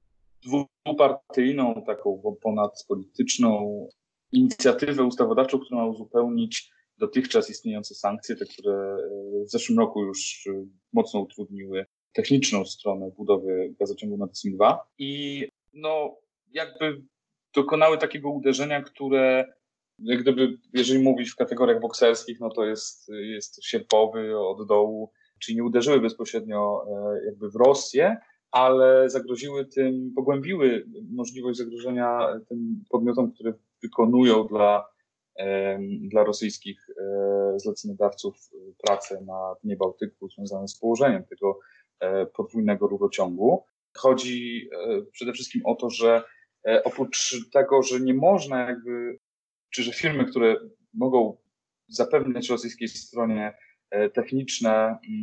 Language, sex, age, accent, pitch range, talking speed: Polish, male, 30-49, native, 110-145 Hz, 105 wpm